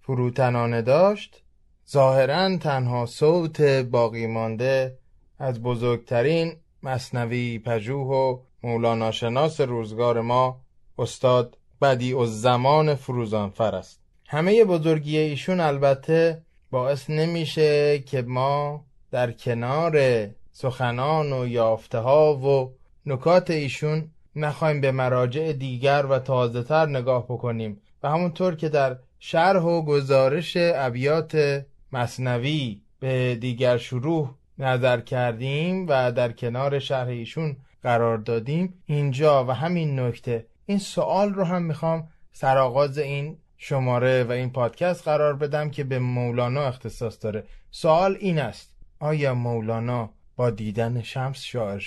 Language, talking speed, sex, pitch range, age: Persian, 115 wpm, male, 120-155 Hz, 20-39